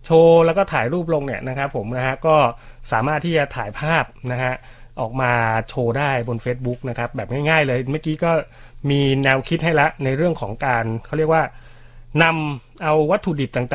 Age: 30-49